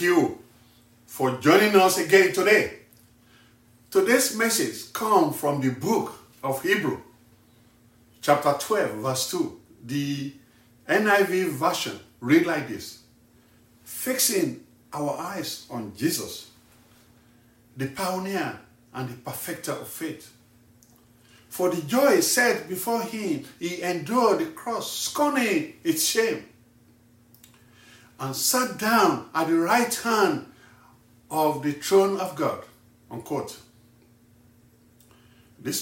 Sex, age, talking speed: male, 50-69, 105 wpm